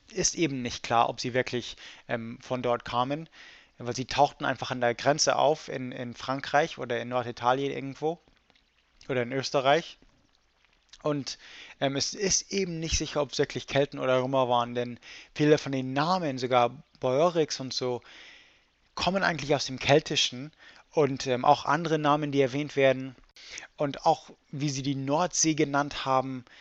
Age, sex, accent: 20-39, male, German